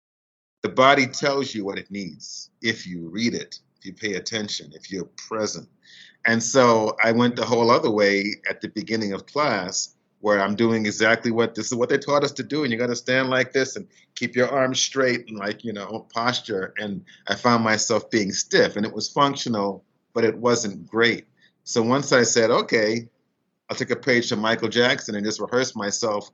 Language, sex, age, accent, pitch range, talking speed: English, male, 30-49, American, 105-120 Hz, 205 wpm